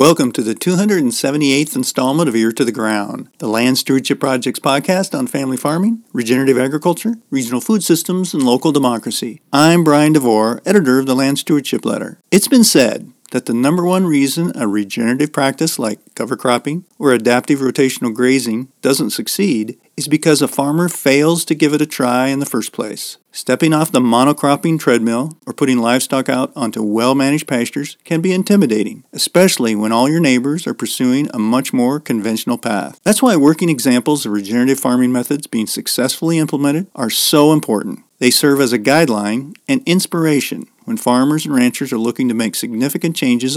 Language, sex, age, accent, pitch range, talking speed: English, male, 50-69, American, 125-160 Hz, 175 wpm